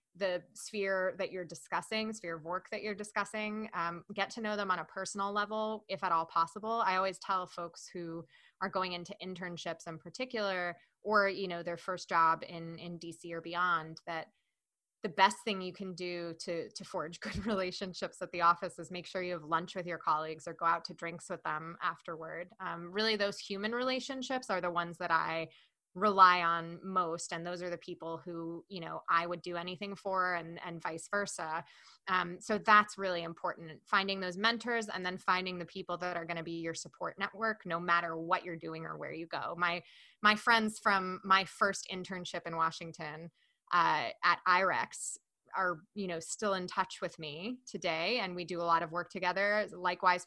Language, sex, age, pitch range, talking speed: English, female, 20-39, 170-195 Hz, 205 wpm